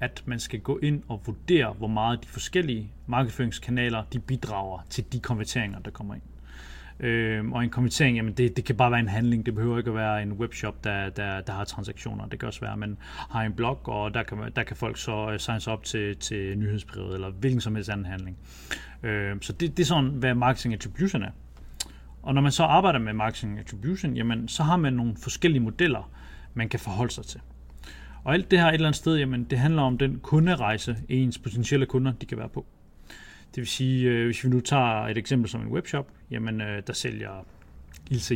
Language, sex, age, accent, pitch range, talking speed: Danish, male, 30-49, native, 105-135 Hz, 220 wpm